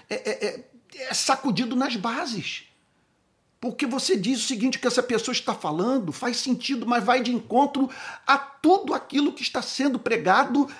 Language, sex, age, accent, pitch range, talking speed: Portuguese, male, 50-69, Brazilian, 160-260 Hz, 160 wpm